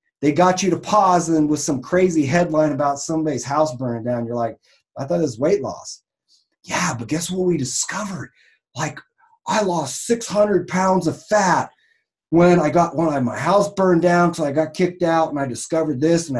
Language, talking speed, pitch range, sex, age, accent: English, 200 wpm, 135-180 Hz, male, 30-49, American